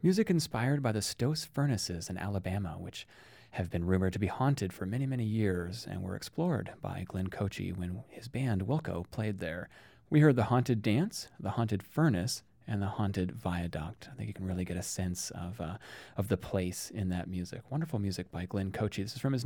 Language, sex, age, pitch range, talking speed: English, male, 30-49, 100-135 Hz, 210 wpm